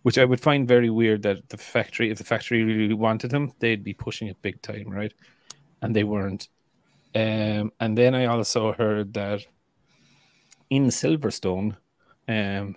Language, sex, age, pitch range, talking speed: English, male, 30-49, 100-115 Hz, 165 wpm